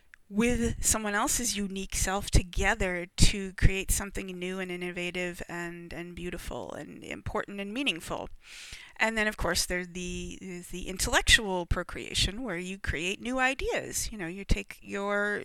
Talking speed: 150 wpm